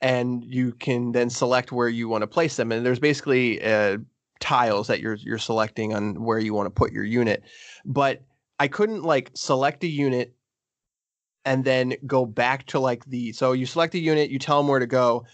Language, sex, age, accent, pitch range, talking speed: English, male, 20-39, American, 120-140 Hz, 205 wpm